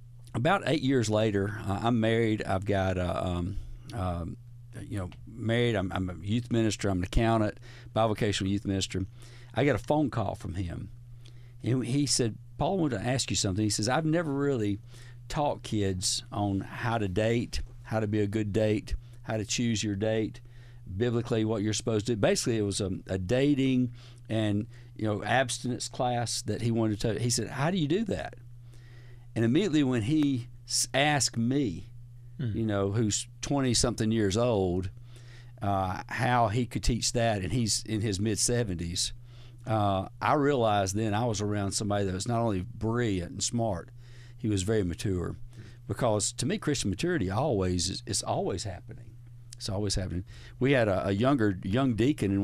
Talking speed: 180 wpm